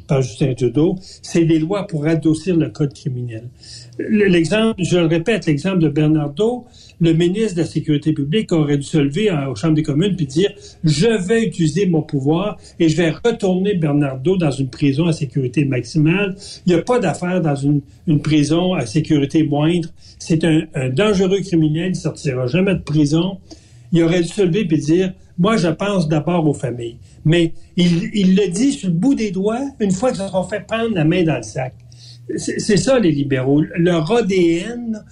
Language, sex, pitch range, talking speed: French, male, 150-195 Hz, 200 wpm